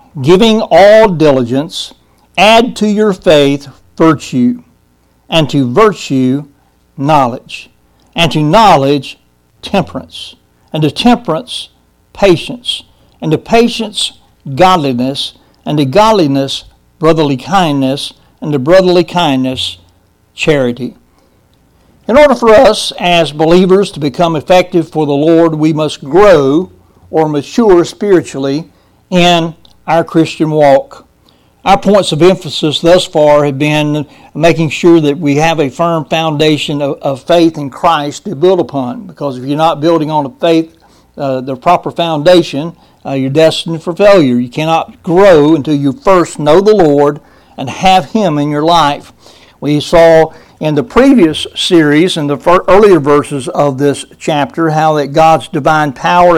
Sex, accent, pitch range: male, American, 140-175 Hz